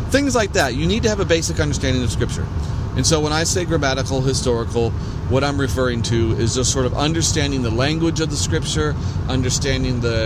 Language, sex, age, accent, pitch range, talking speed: English, male, 40-59, American, 110-140 Hz, 205 wpm